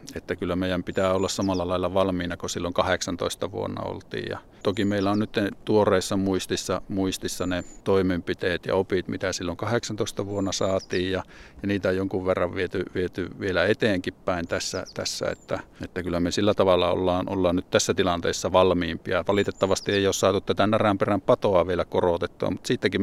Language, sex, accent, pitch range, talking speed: Finnish, male, native, 90-100 Hz, 170 wpm